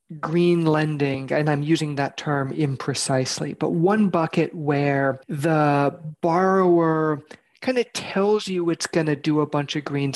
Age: 40-59